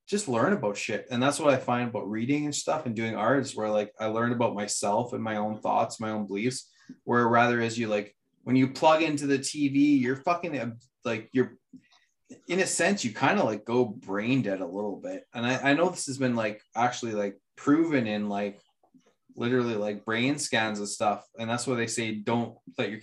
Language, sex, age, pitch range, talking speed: English, male, 20-39, 110-135 Hz, 220 wpm